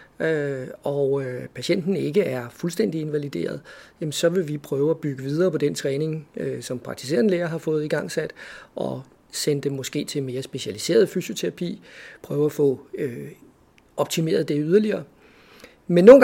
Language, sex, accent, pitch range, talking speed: Danish, male, native, 145-180 Hz, 150 wpm